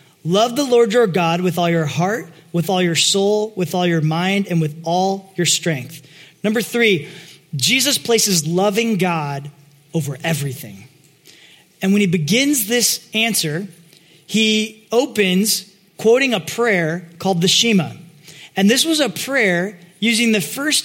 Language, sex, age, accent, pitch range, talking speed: English, male, 20-39, American, 170-225 Hz, 150 wpm